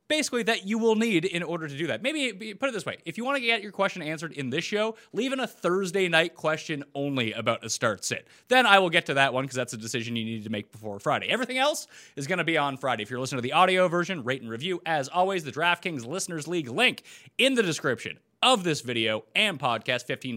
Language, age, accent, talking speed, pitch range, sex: English, 30-49, American, 255 wpm, 125-205 Hz, male